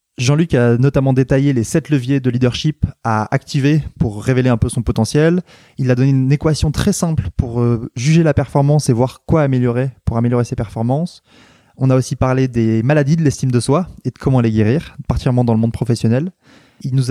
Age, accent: 20-39, French